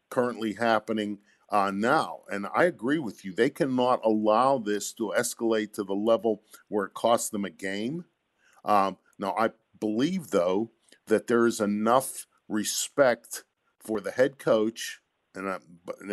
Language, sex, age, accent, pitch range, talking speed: English, male, 50-69, American, 105-135 Hz, 145 wpm